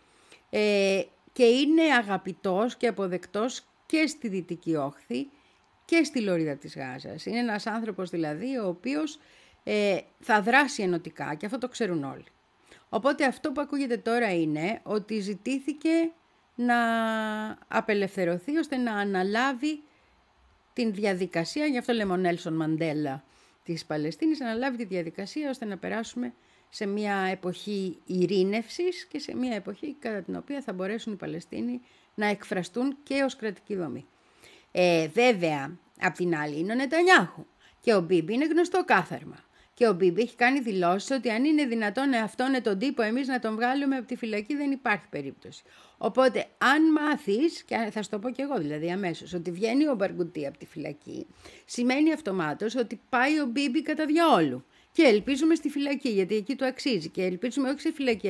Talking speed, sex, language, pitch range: 160 wpm, female, Greek, 185-275 Hz